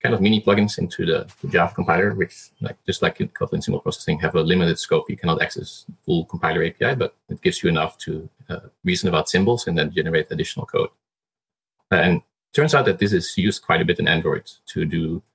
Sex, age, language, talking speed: male, 30-49, English, 210 wpm